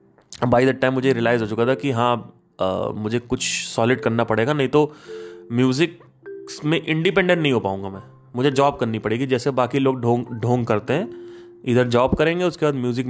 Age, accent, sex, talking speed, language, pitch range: 20-39, native, male, 190 wpm, Hindi, 105-140 Hz